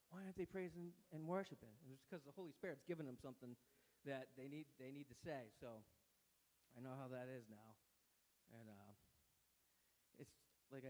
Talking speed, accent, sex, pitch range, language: 175 wpm, American, male, 125-155 Hz, English